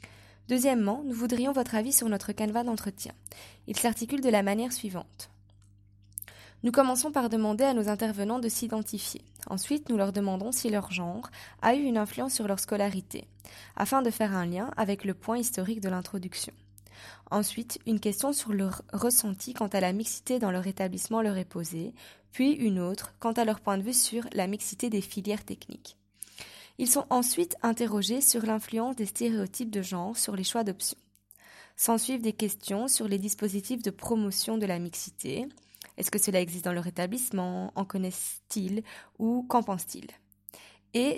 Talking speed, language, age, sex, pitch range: 170 wpm, French, 20-39, female, 185-235 Hz